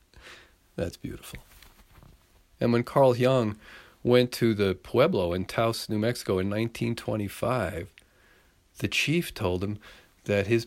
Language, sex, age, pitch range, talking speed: English, male, 50-69, 95-135 Hz, 125 wpm